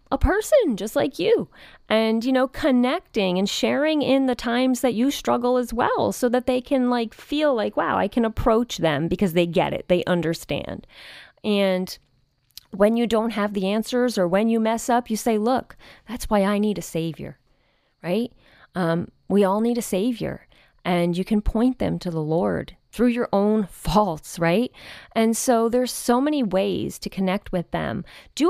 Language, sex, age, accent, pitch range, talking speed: English, female, 30-49, American, 175-235 Hz, 185 wpm